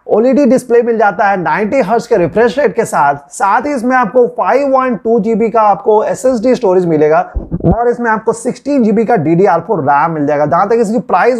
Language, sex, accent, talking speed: Hindi, male, native, 190 wpm